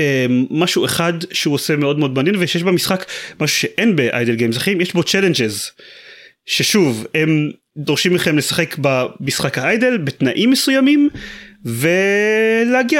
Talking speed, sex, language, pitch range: 125 wpm, male, Hebrew, 135-200 Hz